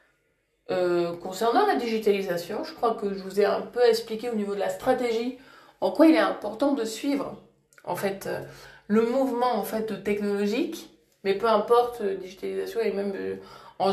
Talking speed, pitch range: 170 wpm, 195-240 Hz